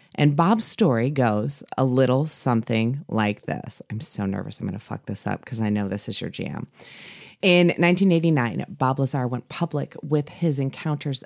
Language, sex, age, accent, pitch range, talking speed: English, female, 30-49, American, 125-165 Hz, 180 wpm